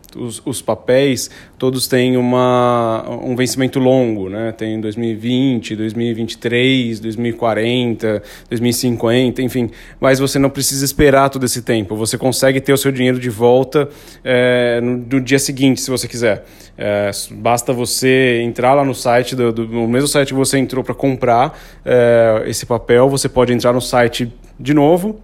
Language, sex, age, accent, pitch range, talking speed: Portuguese, male, 20-39, Brazilian, 120-145 Hz, 160 wpm